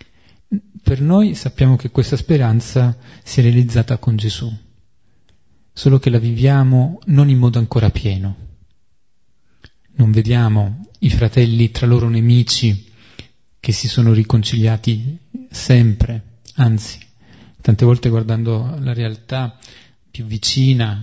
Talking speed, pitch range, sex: 115 wpm, 110-130 Hz, male